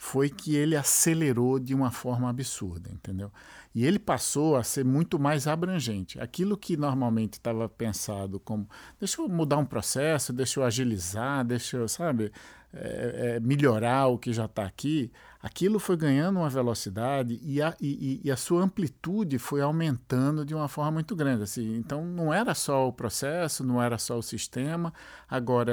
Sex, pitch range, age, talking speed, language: male, 115-155 Hz, 50-69, 175 wpm, Portuguese